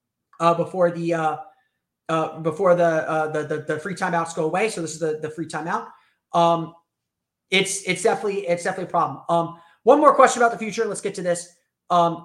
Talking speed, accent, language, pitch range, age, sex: 205 wpm, American, English, 165-210 Hz, 30-49, male